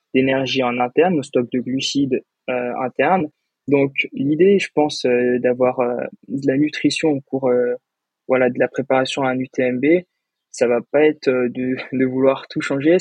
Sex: male